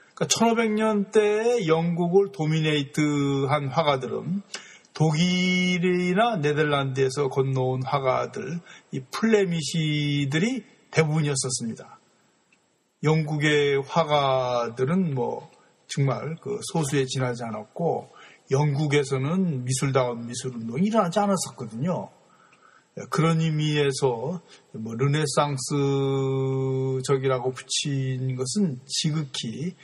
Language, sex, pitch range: Korean, male, 135-180 Hz